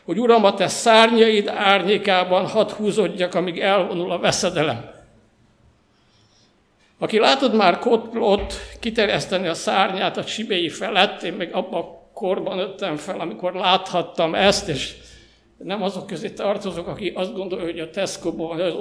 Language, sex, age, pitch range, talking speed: Hungarian, male, 60-79, 180-220 Hz, 140 wpm